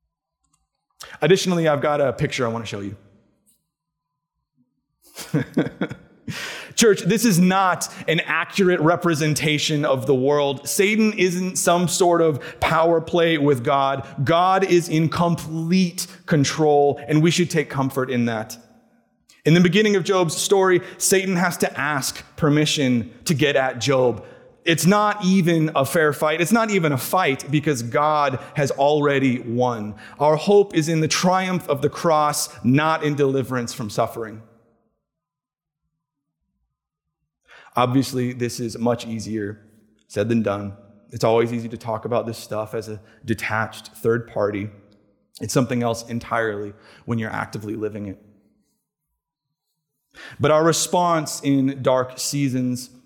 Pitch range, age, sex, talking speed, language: 115-165 Hz, 30-49, male, 140 wpm, English